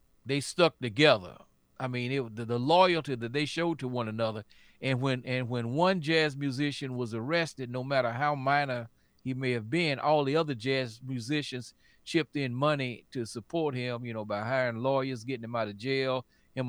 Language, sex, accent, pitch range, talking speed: English, male, American, 115-145 Hz, 195 wpm